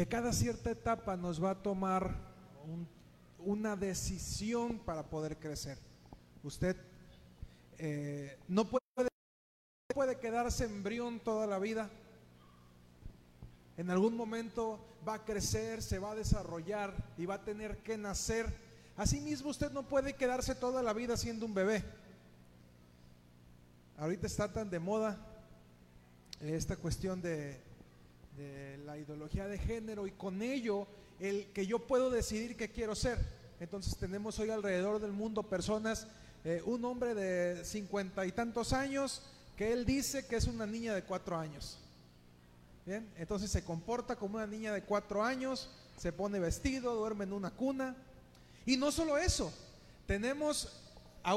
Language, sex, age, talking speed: Spanish, male, 40-59, 145 wpm